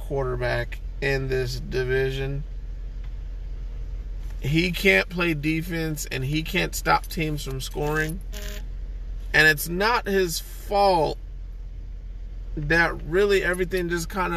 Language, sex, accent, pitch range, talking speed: English, male, American, 155-215 Hz, 105 wpm